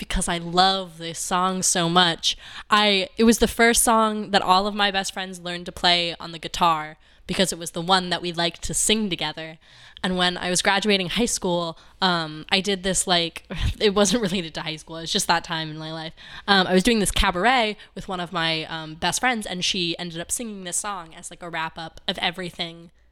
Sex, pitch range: female, 170-205 Hz